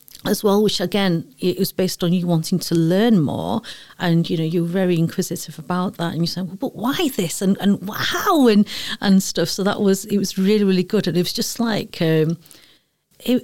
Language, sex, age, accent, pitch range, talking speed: English, female, 40-59, British, 175-200 Hz, 215 wpm